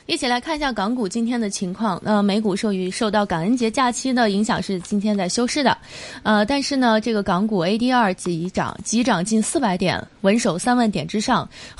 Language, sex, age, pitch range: Chinese, female, 20-39, 185-240 Hz